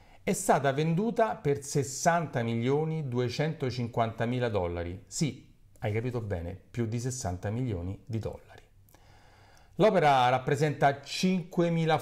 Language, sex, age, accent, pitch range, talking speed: Italian, male, 40-59, native, 110-160 Hz, 95 wpm